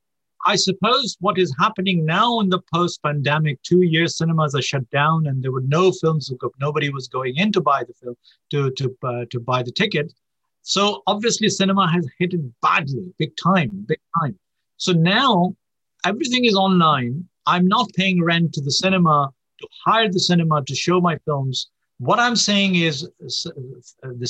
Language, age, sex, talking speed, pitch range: English, 50-69, male, 180 wpm, 145-190 Hz